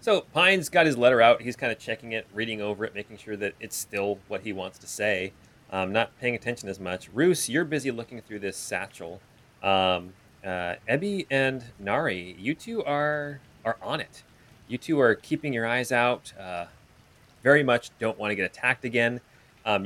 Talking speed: 195 wpm